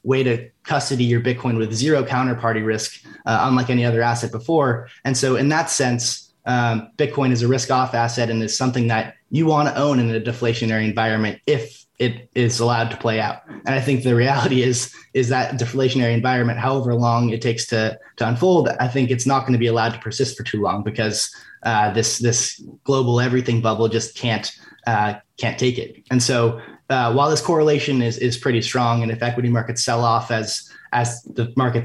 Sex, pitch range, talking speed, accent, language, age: male, 115-130 Hz, 205 wpm, American, English, 20-39